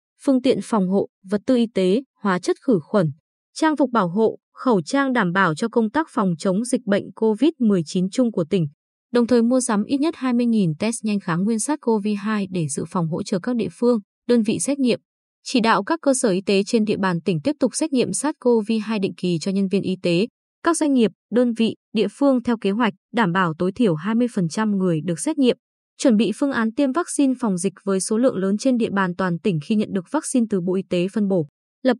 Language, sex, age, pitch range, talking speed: Vietnamese, female, 20-39, 195-250 Hz, 235 wpm